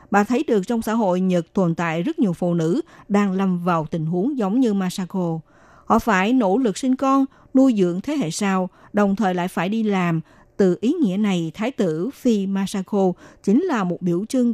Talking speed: 210 wpm